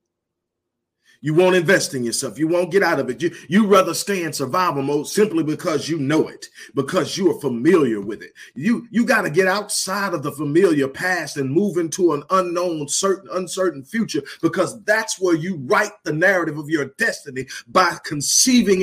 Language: English